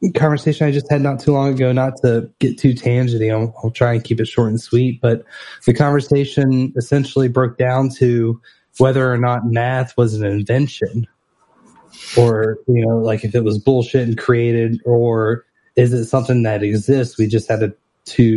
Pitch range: 115-130 Hz